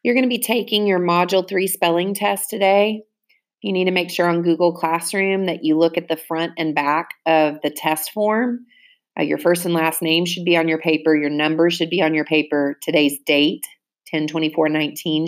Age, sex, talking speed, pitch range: 30-49, female, 210 wpm, 150-170 Hz